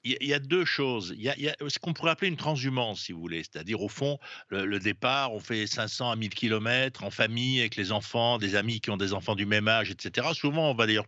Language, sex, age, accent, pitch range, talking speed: French, male, 60-79, French, 110-165 Hz, 275 wpm